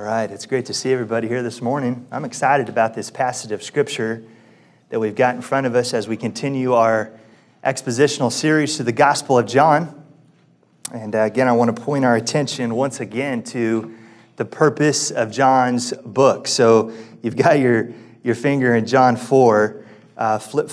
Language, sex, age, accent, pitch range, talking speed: English, male, 30-49, American, 115-140 Hz, 180 wpm